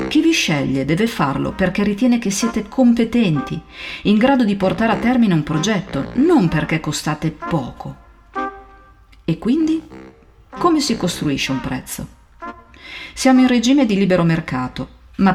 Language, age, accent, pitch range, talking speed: Italian, 40-59, native, 150-220 Hz, 140 wpm